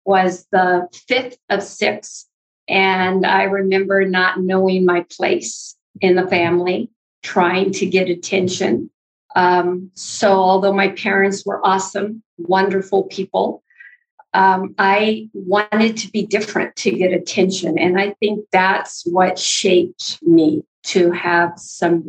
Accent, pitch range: American, 180-195 Hz